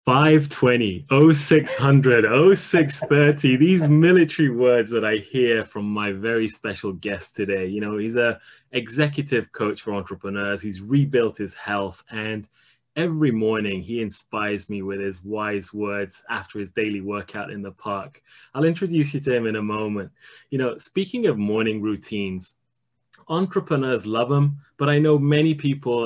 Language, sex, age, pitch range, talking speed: English, male, 20-39, 105-140 Hz, 150 wpm